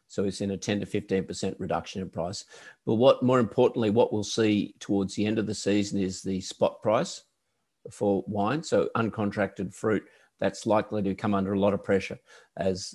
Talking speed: 200 wpm